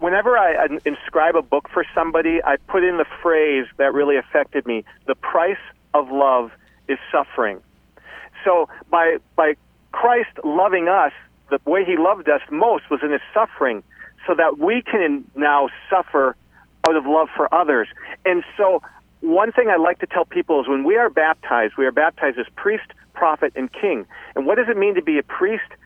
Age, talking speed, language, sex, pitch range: 40-59, 185 wpm, English, male, 145-240 Hz